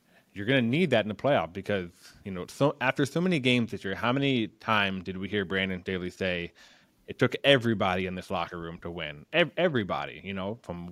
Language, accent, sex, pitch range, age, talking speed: English, American, male, 90-115 Hz, 20-39, 225 wpm